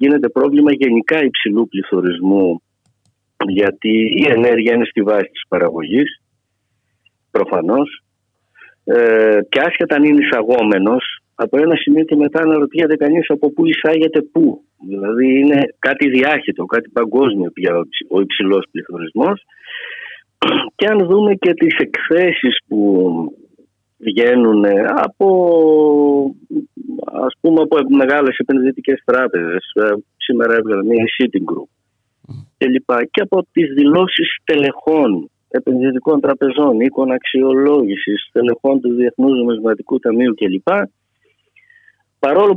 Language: Greek